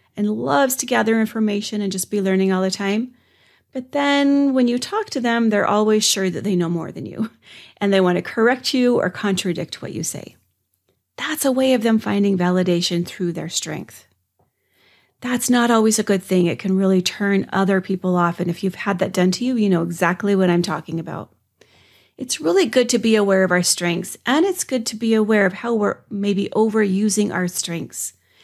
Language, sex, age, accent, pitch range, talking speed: English, female, 30-49, American, 180-220 Hz, 210 wpm